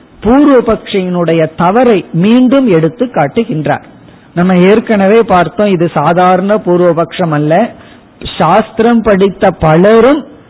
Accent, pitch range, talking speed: native, 165-220 Hz, 85 wpm